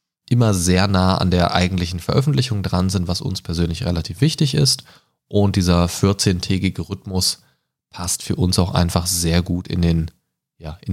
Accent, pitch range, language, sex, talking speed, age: German, 90-120 Hz, German, male, 155 wpm, 20-39